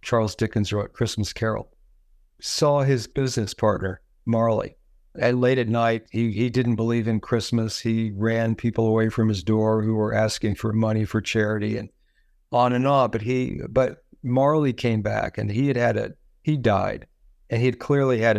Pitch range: 110-125 Hz